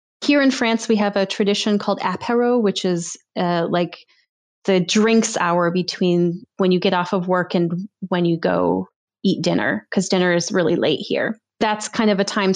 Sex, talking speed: female, 190 wpm